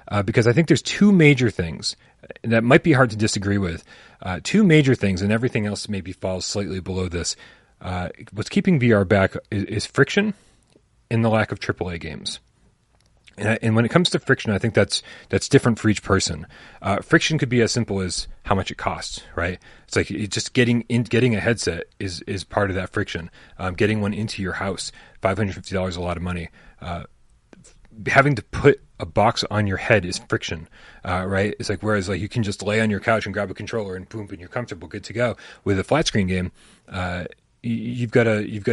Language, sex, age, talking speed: English, male, 30-49, 225 wpm